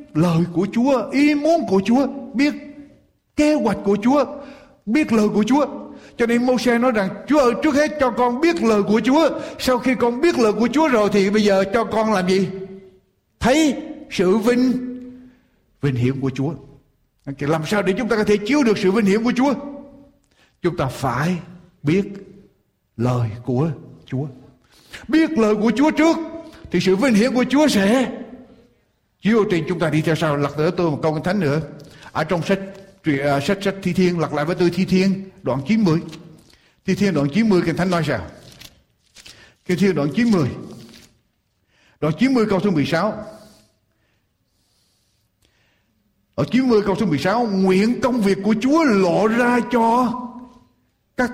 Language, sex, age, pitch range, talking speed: Vietnamese, male, 60-79, 170-250 Hz, 175 wpm